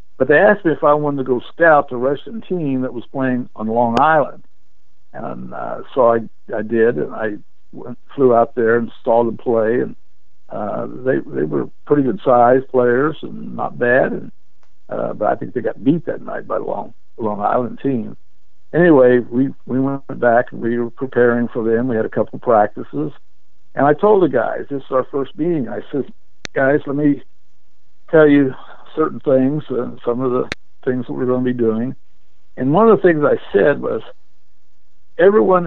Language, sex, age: English, male, 60-79